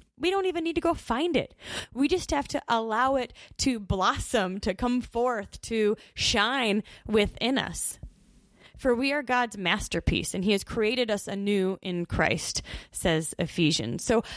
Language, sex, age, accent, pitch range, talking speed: English, female, 20-39, American, 195-260 Hz, 165 wpm